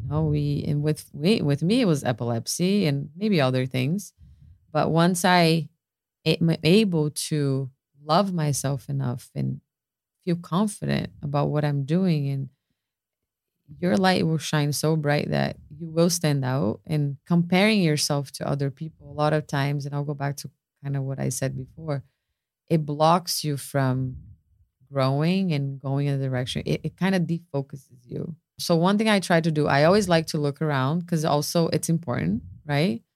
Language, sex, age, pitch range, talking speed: English, female, 30-49, 135-170 Hz, 175 wpm